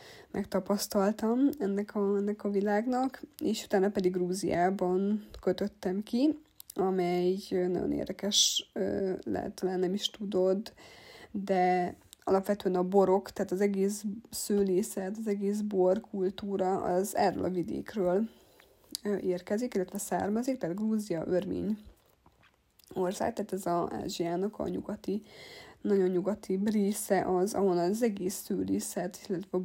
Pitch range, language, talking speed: 180-205 Hz, Hungarian, 115 wpm